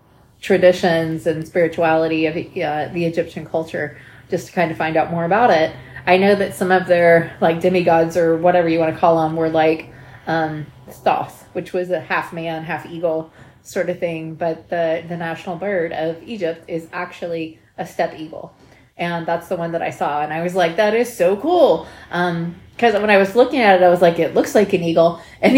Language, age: English, 20-39